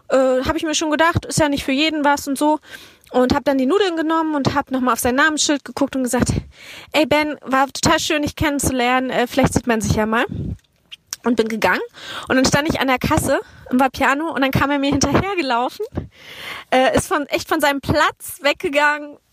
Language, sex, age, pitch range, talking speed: German, female, 20-39, 245-300 Hz, 210 wpm